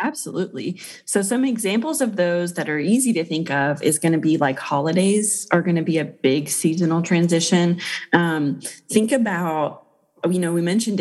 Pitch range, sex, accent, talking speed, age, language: 160-190 Hz, female, American, 180 wpm, 30-49, English